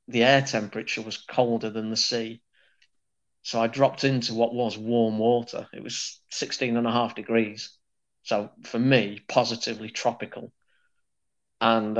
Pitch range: 110-125 Hz